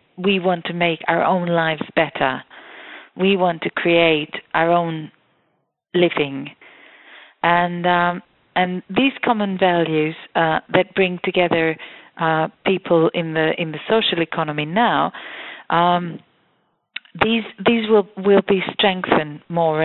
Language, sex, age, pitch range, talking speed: English, female, 40-59, 165-205 Hz, 125 wpm